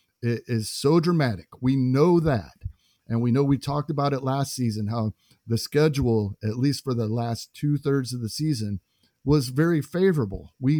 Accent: American